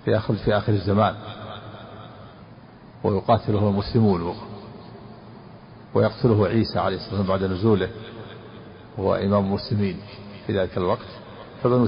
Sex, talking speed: male, 110 wpm